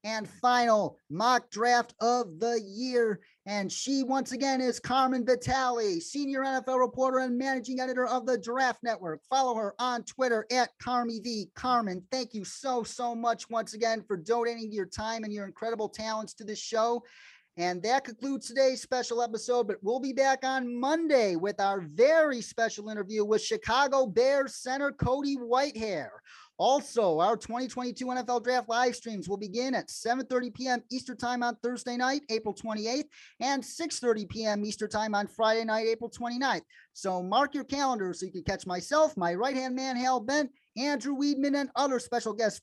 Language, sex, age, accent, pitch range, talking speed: English, male, 30-49, American, 220-260 Hz, 170 wpm